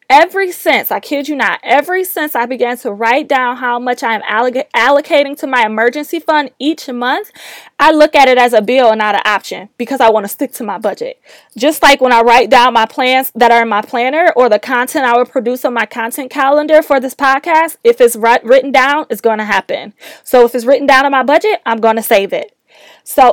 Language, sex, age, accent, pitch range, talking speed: English, female, 20-39, American, 235-290 Hz, 235 wpm